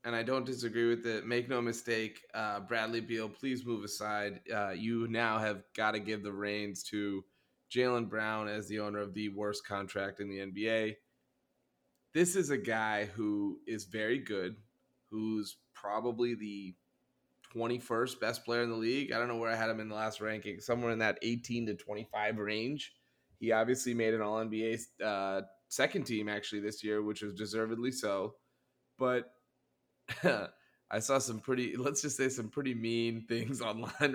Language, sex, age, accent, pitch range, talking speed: English, male, 20-39, American, 105-125 Hz, 175 wpm